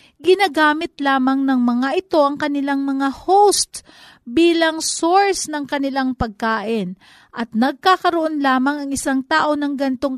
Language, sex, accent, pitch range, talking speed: Filipino, female, native, 225-315 Hz, 130 wpm